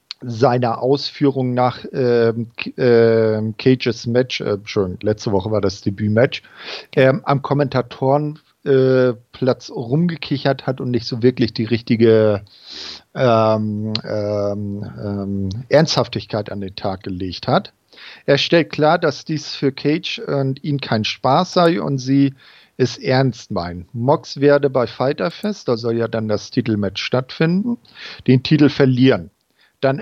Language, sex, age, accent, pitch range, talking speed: German, male, 50-69, German, 115-145 Hz, 135 wpm